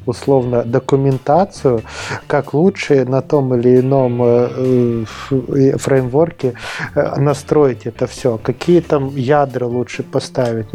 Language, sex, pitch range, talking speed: Russian, male, 125-145 Hz, 95 wpm